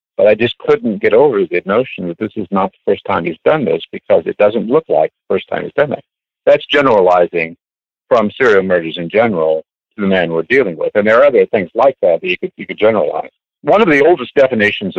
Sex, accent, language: male, American, English